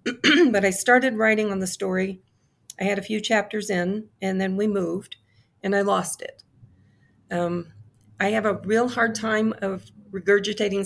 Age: 40-59